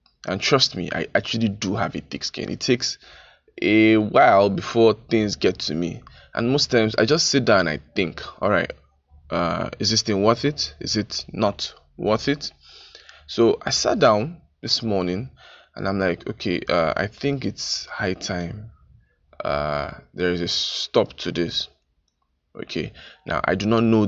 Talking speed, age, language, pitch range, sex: 175 wpm, 20-39, English, 85-115 Hz, male